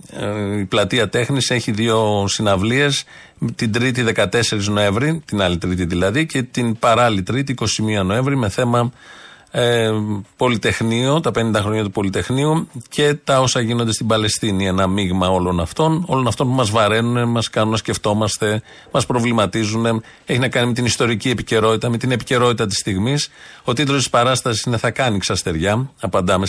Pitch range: 100-130 Hz